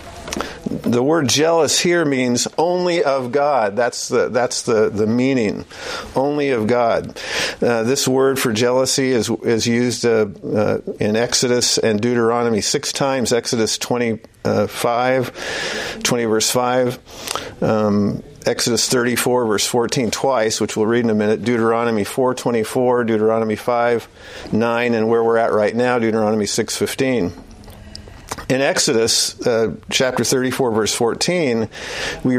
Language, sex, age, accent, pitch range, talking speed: English, male, 50-69, American, 115-150 Hz, 135 wpm